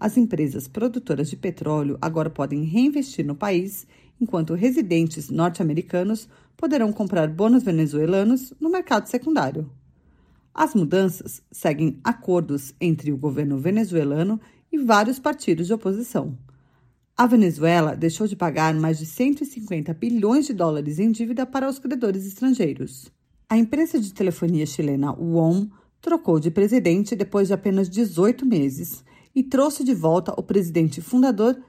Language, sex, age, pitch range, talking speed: Portuguese, female, 40-59, 160-240 Hz, 135 wpm